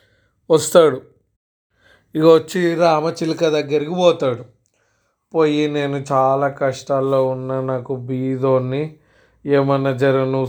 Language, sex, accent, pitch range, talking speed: Telugu, male, native, 130-145 Hz, 90 wpm